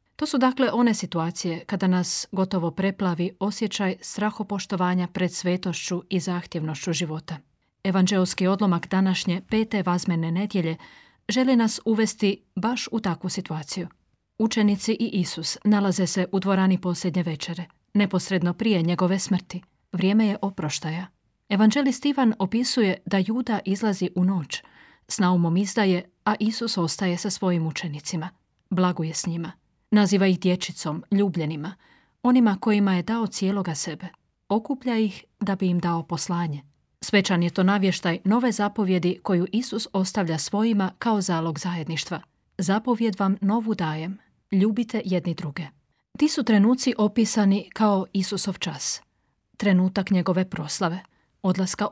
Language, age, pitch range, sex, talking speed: Croatian, 40-59, 175-210 Hz, female, 130 wpm